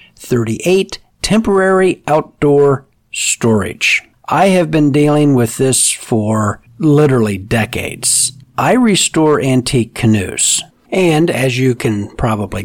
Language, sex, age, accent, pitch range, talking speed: English, male, 50-69, American, 110-150 Hz, 105 wpm